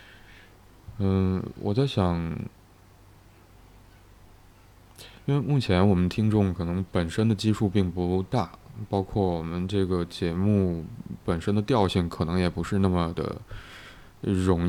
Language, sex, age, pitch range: Chinese, male, 20-39, 90-105 Hz